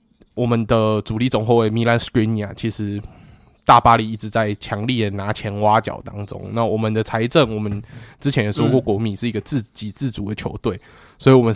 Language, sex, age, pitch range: Chinese, male, 20-39, 105-125 Hz